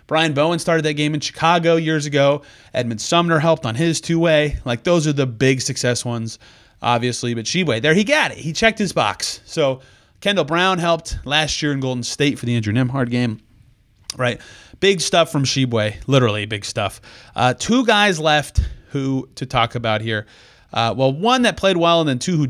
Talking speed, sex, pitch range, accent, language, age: 195 wpm, male, 120-170 Hz, American, English, 30-49